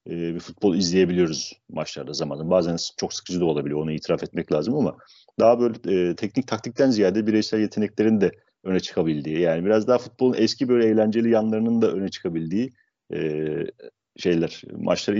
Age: 40-59